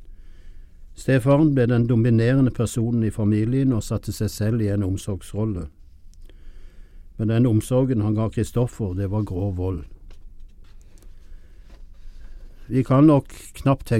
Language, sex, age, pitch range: English, male, 60-79, 80-120 Hz